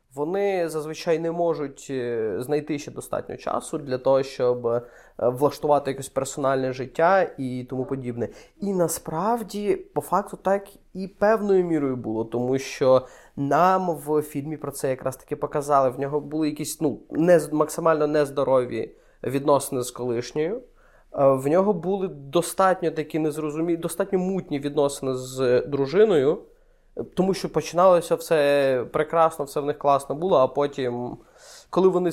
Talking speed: 135 wpm